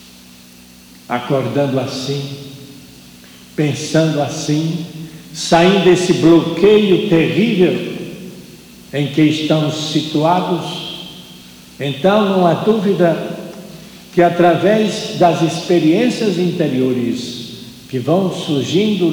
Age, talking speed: 60-79, 75 wpm